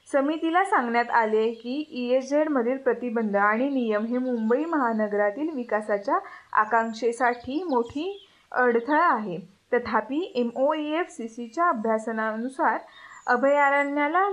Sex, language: female, Marathi